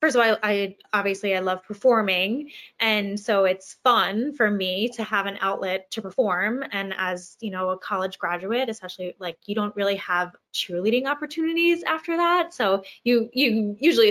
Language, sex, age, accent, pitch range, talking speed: English, female, 20-39, American, 200-275 Hz, 175 wpm